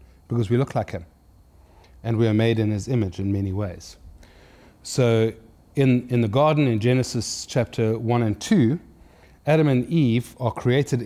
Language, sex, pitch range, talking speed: English, male, 90-125 Hz, 170 wpm